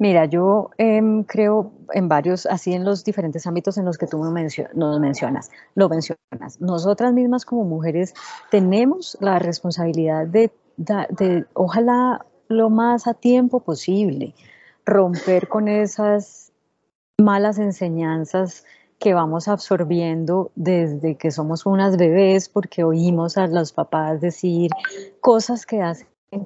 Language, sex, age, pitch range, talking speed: English, female, 30-49, 170-200 Hz, 130 wpm